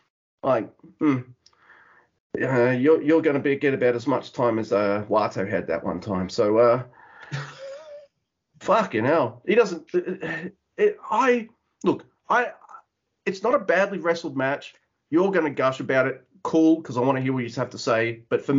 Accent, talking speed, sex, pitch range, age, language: Australian, 180 wpm, male, 130-195 Hz, 30-49, English